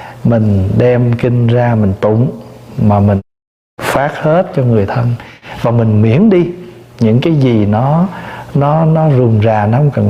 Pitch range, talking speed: 110-150 Hz, 165 wpm